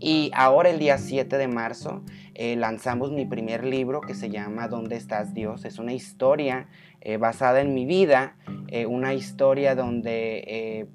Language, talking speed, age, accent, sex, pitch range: Spanish, 170 wpm, 30-49, Mexican, male, 115-150 Hz